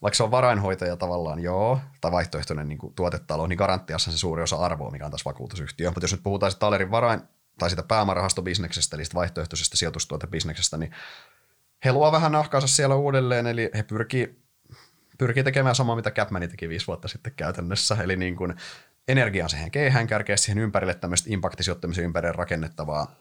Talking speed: 170 wpm